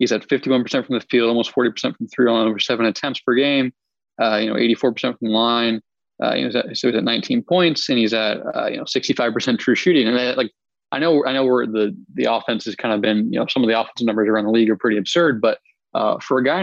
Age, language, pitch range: 20-39, English, 115-135 Hz